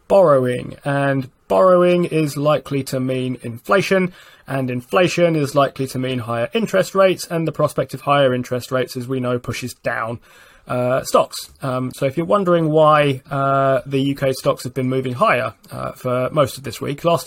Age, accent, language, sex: 20-39, British, English, male